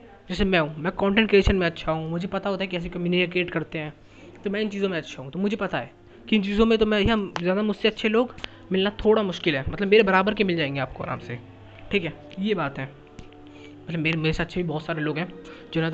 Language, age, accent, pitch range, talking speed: Hindi, 20-39, native, 150-200 Hz, 255 wpm